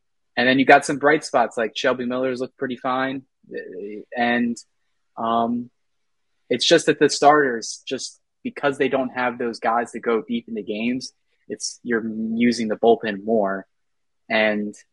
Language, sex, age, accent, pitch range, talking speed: English, male, 20-39, American, 110-135 Hz, 160 wpm